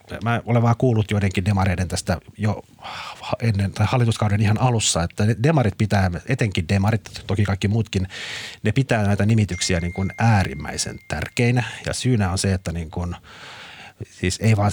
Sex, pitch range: male, 90-110 Hz